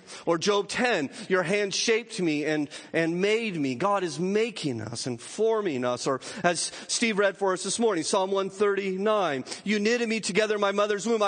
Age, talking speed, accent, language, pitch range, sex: 40-59, 190 wpm, American, English, 155-215 Hz, male